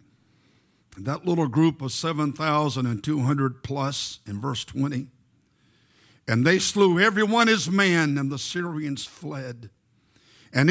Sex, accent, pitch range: male, American, 125-190 Hz